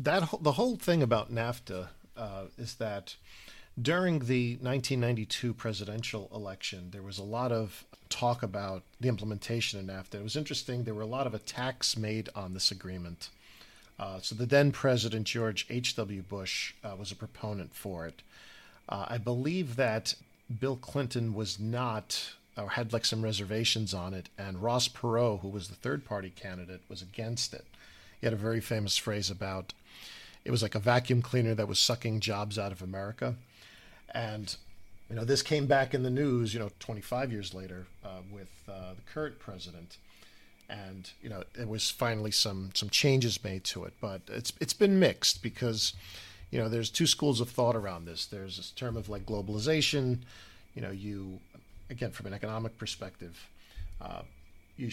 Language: English